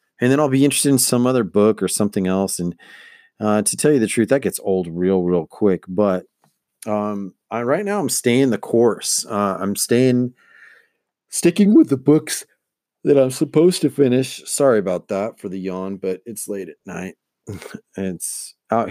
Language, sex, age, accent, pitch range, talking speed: English, male, 40-59, American, 90-120 Hz, 185 wpm